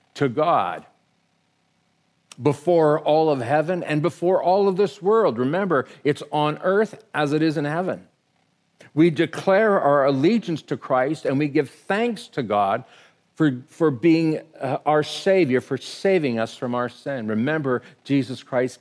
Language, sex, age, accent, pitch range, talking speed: English, male, 50-69, American, 130-175 Hz, 155 wpm